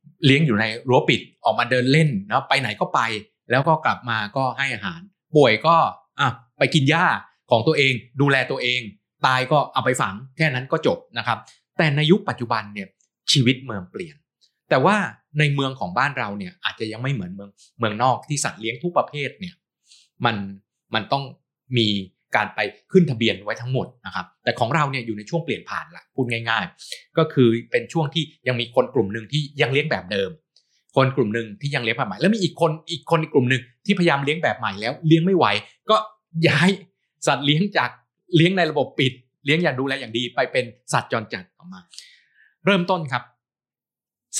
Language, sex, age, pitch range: Thai, male, 20-39, 120-160 Hz